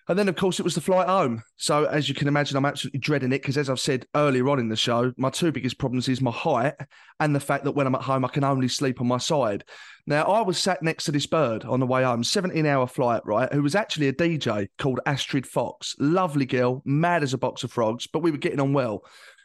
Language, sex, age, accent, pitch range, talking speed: English, male, 30-49, British, 130-180 Hz, 265 wpm